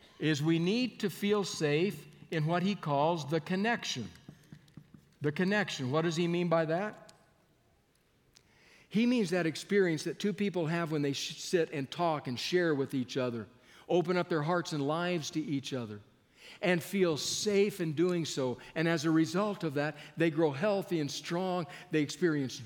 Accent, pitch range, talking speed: American, 145-185 Hz, 175 wpm